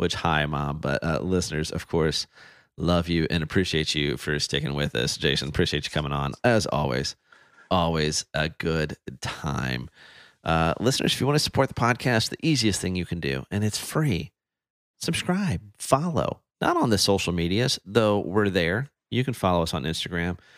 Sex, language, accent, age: male, English, American, 30-49